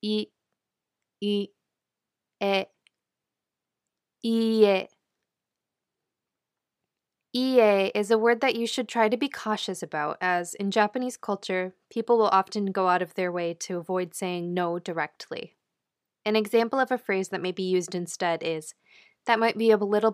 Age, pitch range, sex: 20-39, 185-225 Hz, female